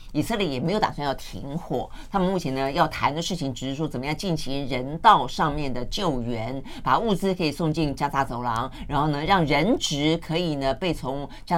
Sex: female